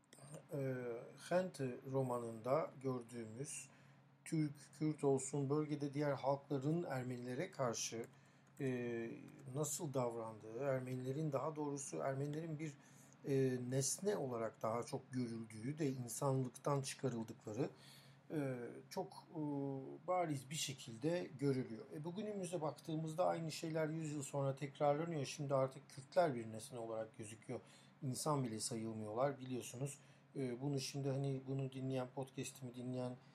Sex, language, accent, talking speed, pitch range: male, Turkish, native, 105 wpm, 125-145 Hz